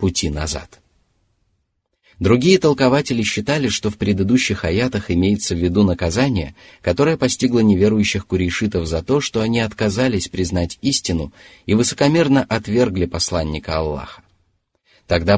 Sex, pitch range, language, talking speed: male, 90-110 Hz, Russian, 115 wpm